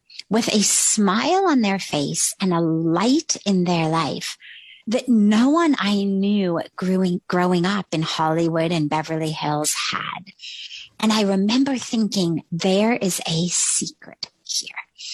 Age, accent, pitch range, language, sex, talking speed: 30-49, American, 165-210 Hz, English, female, 140 wpm